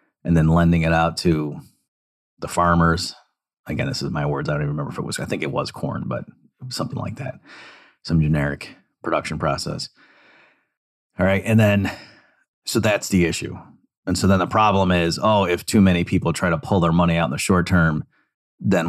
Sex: male